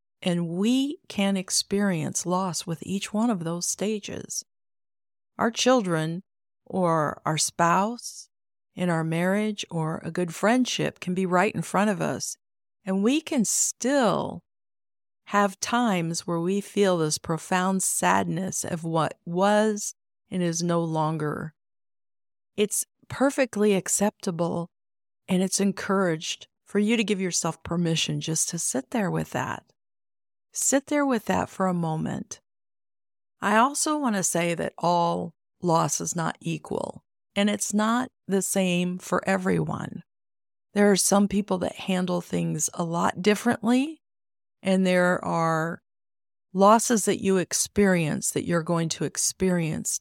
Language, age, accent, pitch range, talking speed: English, 50-69, American, 165-205 Hz, 135 wpm